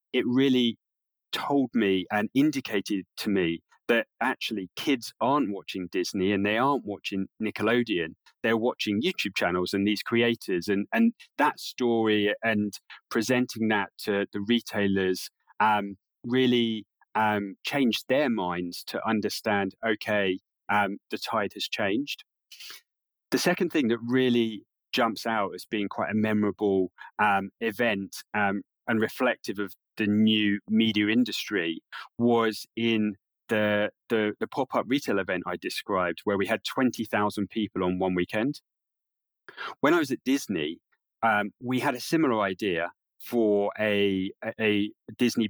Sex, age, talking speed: male, 30-49, 140 wpm